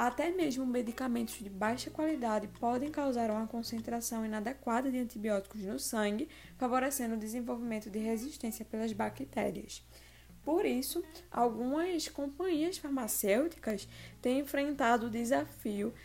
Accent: Brazilian